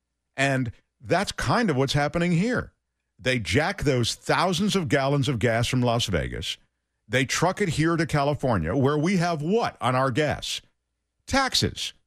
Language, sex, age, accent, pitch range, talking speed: English, male, 50-69, American, 100-150 Hz, 160 wpm